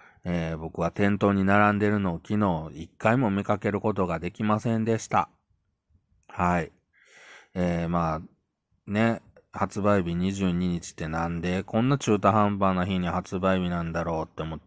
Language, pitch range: Japanese, 85-100 Hz